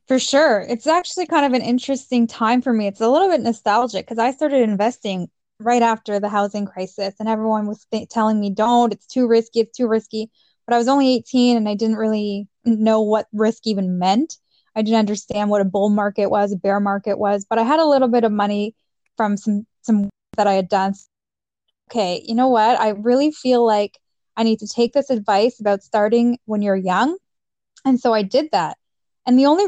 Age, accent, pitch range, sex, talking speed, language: 10-29, American, 205-245 Hz, female, 210 wpm, English